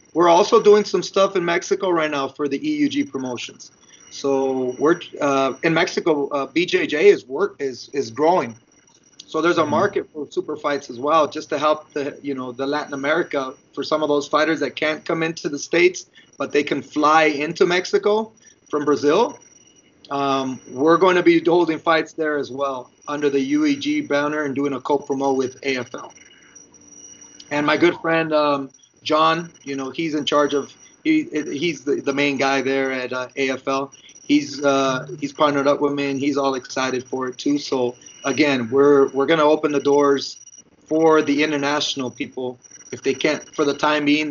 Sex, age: male, 30-49